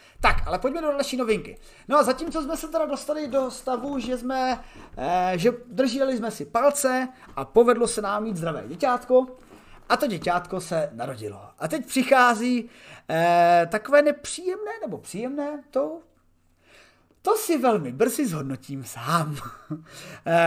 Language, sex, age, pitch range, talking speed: Czech, male, 30-49, 185-260 Hz, 150 wpm